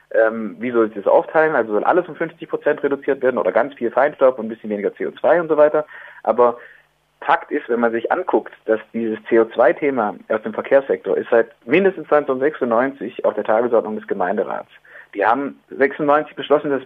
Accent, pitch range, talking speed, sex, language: German, 120-150 Hz, 185 wpm, male, German